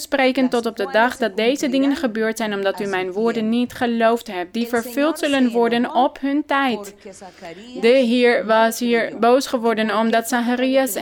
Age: 20-39